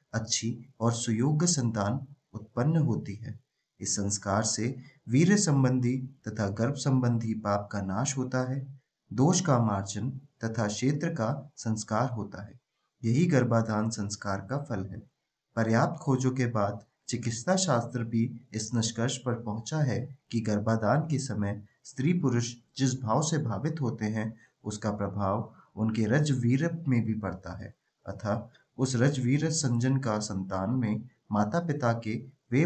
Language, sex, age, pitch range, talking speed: Hindi, male, 30-49, 110-135 Hz, 160 wpm